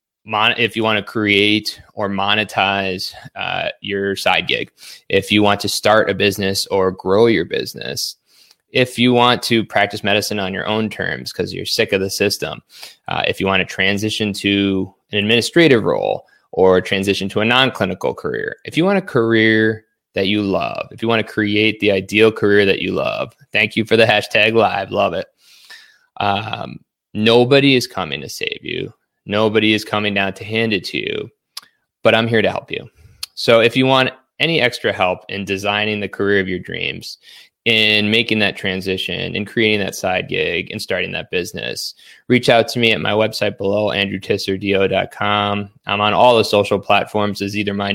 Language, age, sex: English, 20-39, male